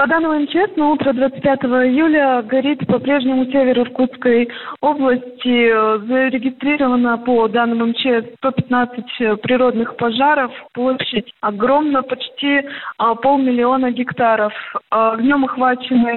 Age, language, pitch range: 20-39, Russian, 235-260 Hz